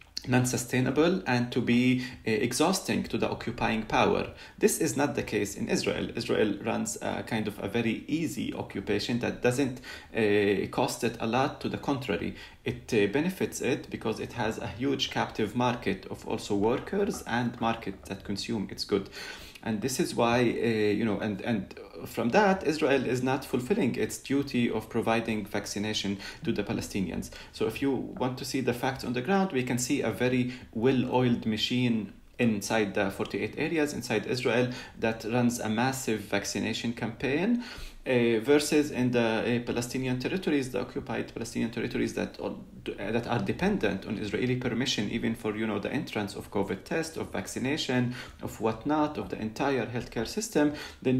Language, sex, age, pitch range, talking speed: English, male, 30-49, 110-130 Hz, 170 wpm